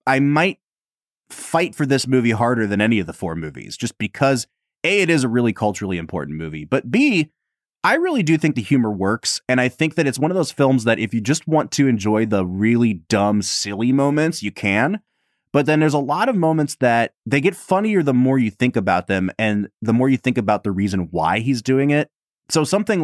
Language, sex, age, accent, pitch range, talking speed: English, male, 30-49, American, 95-135 Hz, 225 wpm